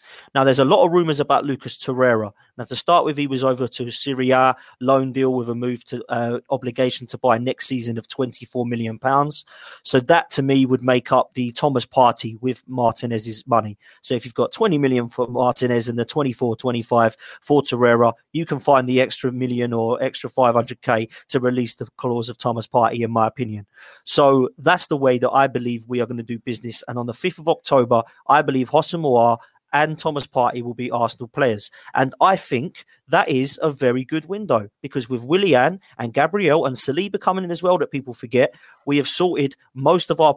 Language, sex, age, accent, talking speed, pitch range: English, male, 20-39, British, 210 wpm, 120-145 Hz